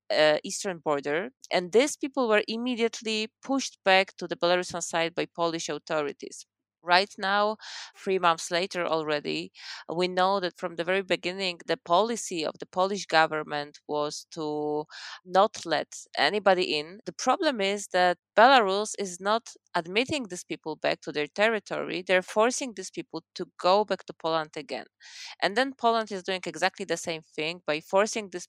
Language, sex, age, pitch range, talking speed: German, female, 20-39, 160-195 Hz, 165 wpm